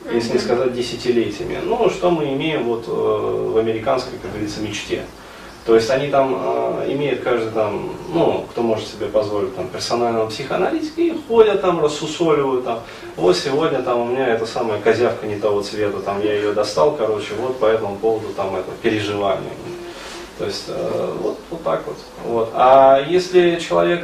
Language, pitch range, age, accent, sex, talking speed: Russian, 110-170 Hz, 20-39, native, male, 175 wpm